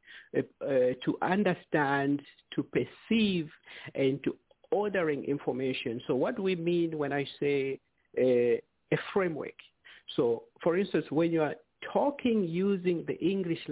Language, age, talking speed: English, 50-69, 125 wpm